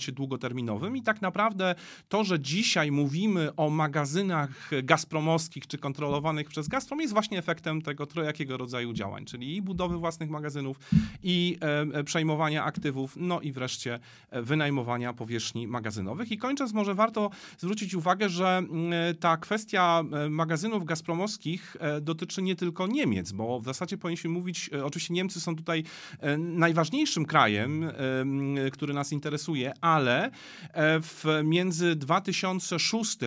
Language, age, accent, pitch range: Polish, 40-59, native, 135-175 Hz